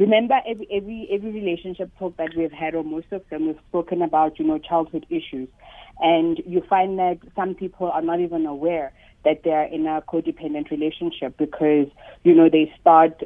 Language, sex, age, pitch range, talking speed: English, female, 30-49, 155-185 Hz, 195 wpm